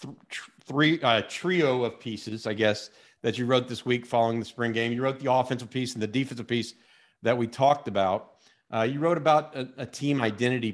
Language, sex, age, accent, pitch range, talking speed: English, male, 40-59, American, 115-145 Hz, 205 wpm